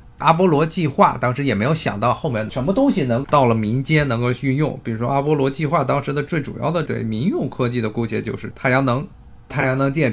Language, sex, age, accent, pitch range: Chinese, male, 20-39, native, 110-145 Hz